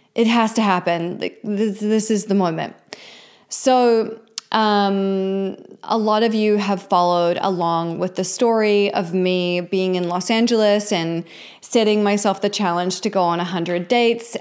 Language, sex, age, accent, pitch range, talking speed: English, female, 20-39, American, 180-210 Hz, 155 wpm